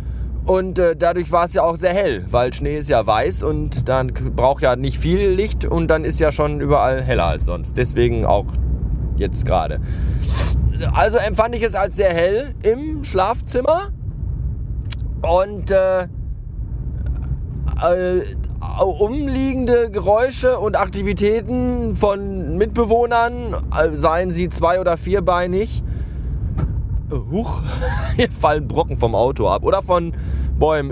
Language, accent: German, German